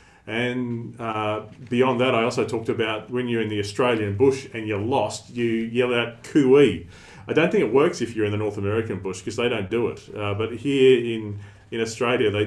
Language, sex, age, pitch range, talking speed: English, male, 40-59, 105-125 Hz, 215 wpm